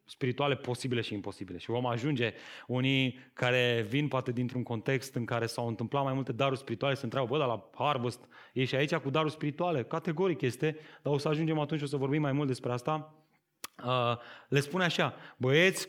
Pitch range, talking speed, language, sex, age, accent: 130-175 Hz, 190 wpm, Romanian, male, 30-49, native